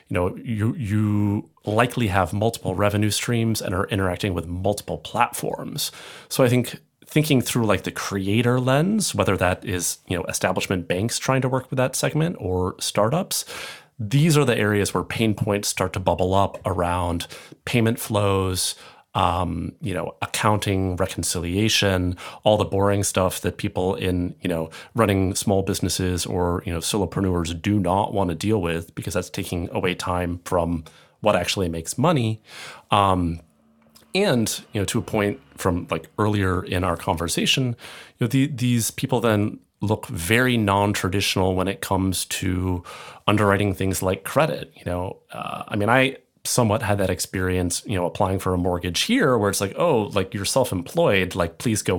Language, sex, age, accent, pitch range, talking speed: English, male, 30-49, American, 90-110 Hz, 170 wpm